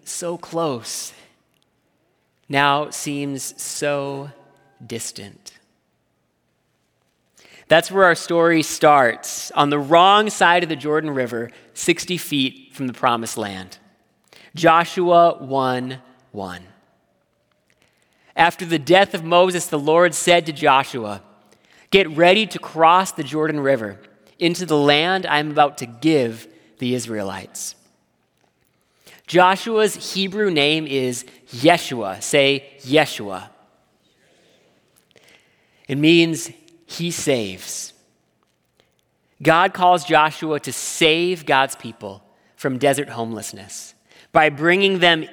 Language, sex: English, male